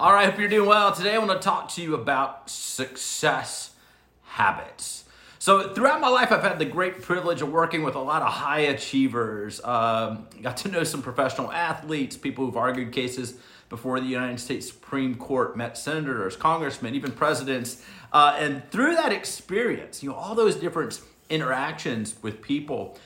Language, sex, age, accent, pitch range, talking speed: English, male, 40-59, American, 130-180 Hz, 175 wpm